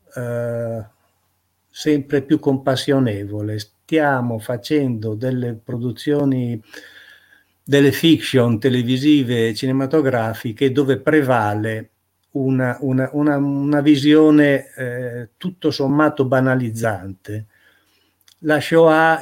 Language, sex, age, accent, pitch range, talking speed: Italian, male, 50-69, native, 115-145 Hz, 70 wpm